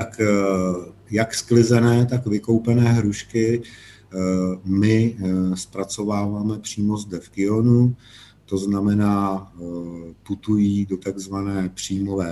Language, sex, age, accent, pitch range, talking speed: Czech, male, 50-69, native, 90-105 Hz, 90 wpm